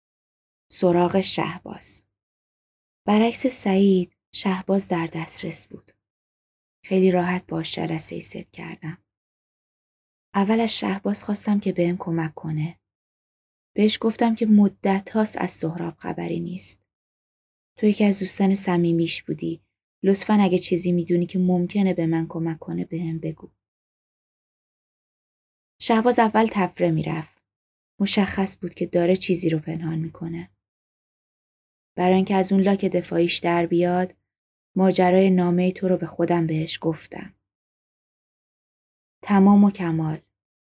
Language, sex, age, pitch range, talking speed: Persian, female, 20-39, 160-195 Hz, 120 wpm